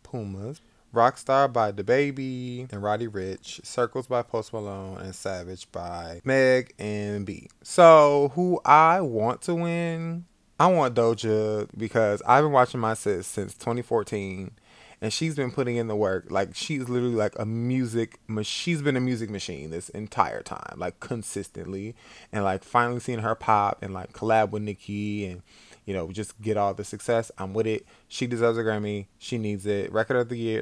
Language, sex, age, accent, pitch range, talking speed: English, male, 20-39, American, 105-140 Hz, 180 wpm